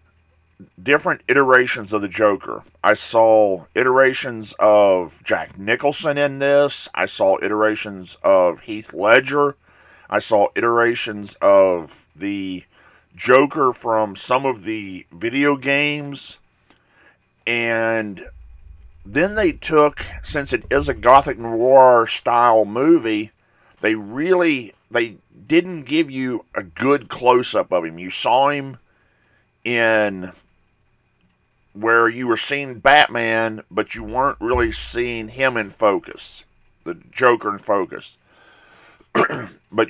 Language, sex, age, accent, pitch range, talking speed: English, male, 50-69, American, 105-130 Hz, 115 wpm